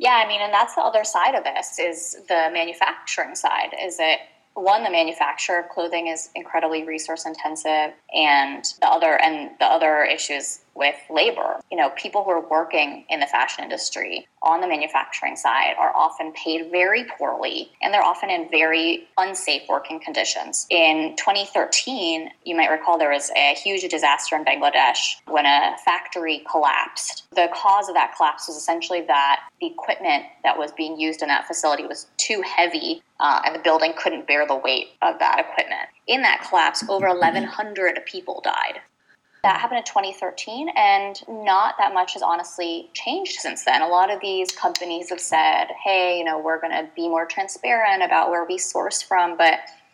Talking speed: 180 wpm